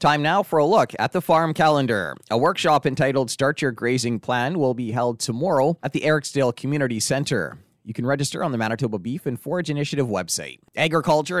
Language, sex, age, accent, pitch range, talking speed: English, male, 30-49, American, 120-155 Hz, 195 wpm